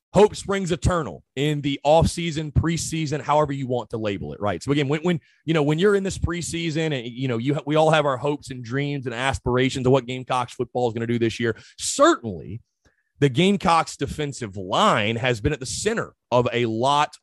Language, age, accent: English, 30-49, American